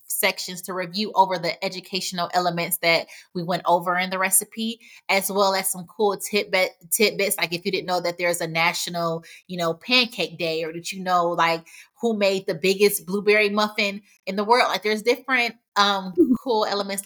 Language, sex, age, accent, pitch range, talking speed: English, female, 20-39, American, 175-205 Hz, 195 wpm